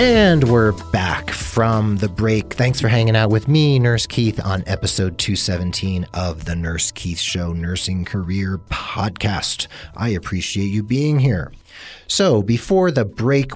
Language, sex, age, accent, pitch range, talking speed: English, male, 40-59, American, 90-120 Hz, 150 wpm